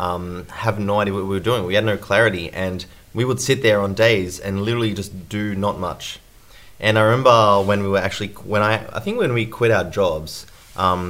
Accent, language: Australian, English